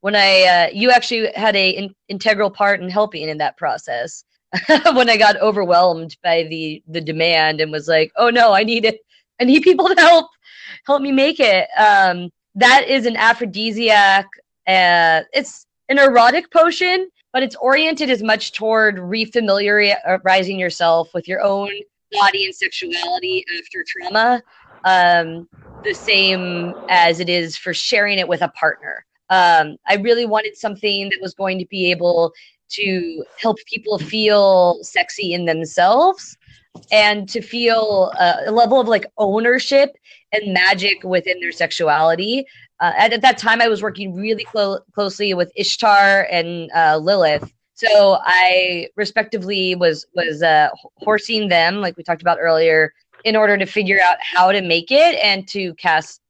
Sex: female